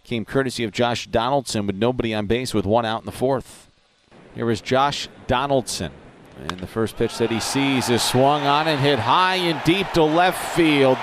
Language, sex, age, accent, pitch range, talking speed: English, male, 40-59, American, 110-155 Hz, 200 wpm